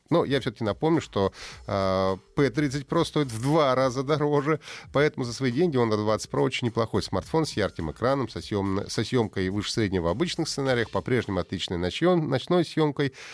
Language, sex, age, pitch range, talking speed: Russian, male, 30-49, 95-140 Hz, 185 wpm